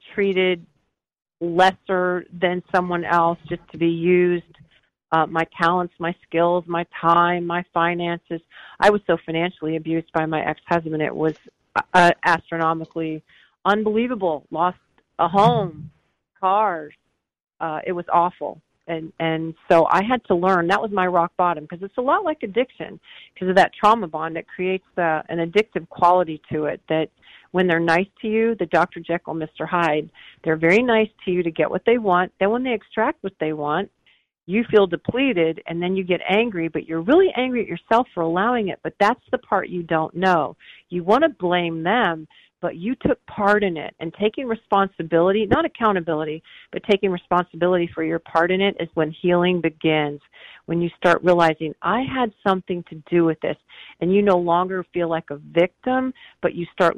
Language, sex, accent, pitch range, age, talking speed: English, female, American, 160-195 Hz, 40-59, 180 wpm